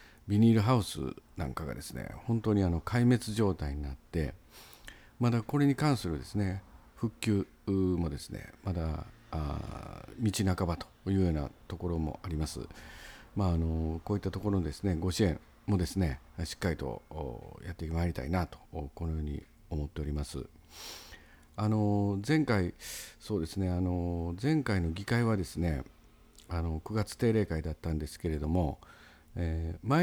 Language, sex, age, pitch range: Japanese, male, 50-69, 80-105 Hz